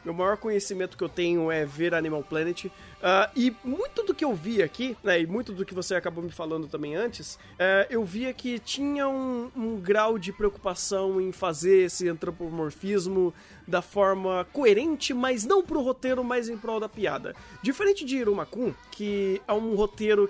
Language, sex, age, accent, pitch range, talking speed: Portuguese, male, 20-39, Brazilian, 180-240 Hz, 185 wpm